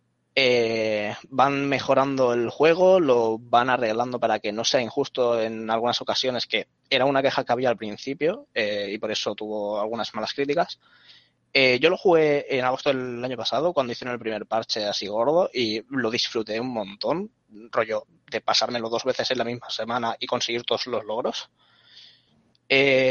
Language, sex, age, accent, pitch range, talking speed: Spanish, male, 20-39, Spanish, 110-140 Hz, 175 wpm